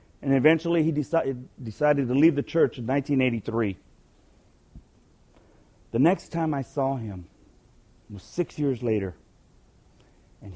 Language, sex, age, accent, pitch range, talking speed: English, male, 40-59, American, 110-150 Hz, 125 wpm